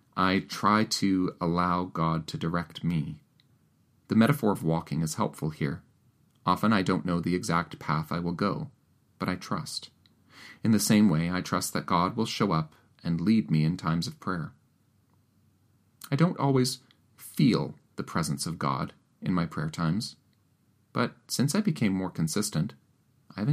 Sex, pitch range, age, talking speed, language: male, 85-115 Hz, 30-49, 165 wpm, English